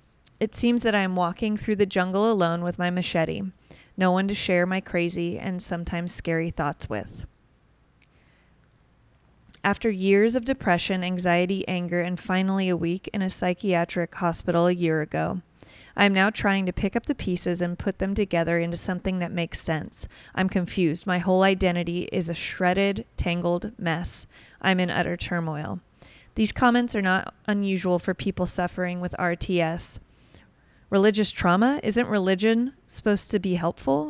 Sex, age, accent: female, 20-39, American